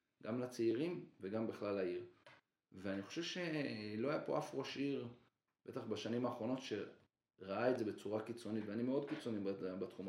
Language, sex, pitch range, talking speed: Hebrew, male, 105-135 Hz, 150 wpm